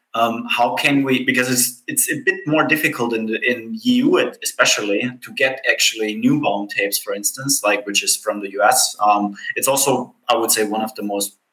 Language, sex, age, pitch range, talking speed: English, male, 20-39, 115-150 Hz, 210 wpm